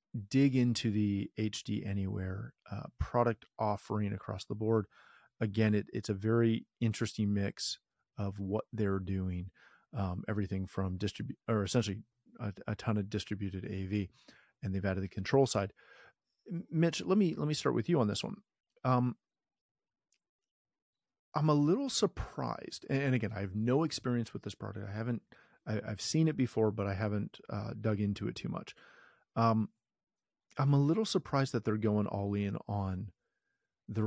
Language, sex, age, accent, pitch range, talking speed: English, male, 40-59, American, 100-125 Hz, 165 wpm